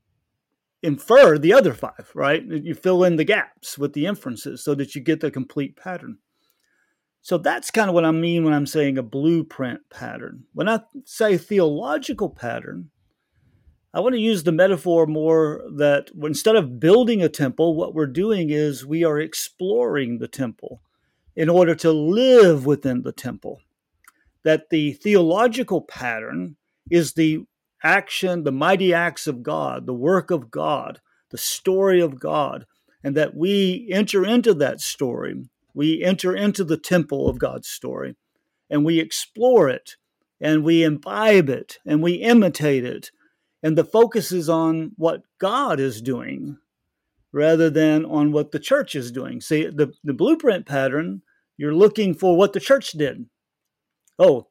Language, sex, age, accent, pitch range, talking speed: English, male, 50-69, American, 150-190 Hz, 160 wpm